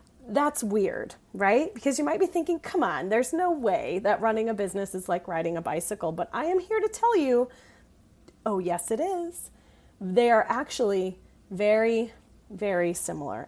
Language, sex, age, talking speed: English, female, 30-49, 175 wpm